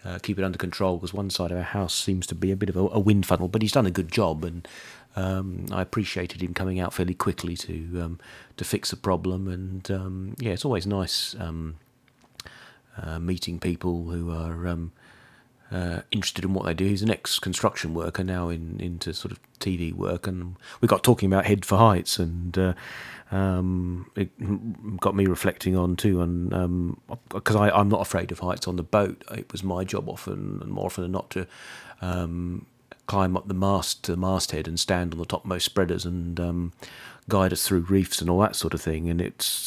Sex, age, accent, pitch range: male, 40-59, British, 90-100 Hz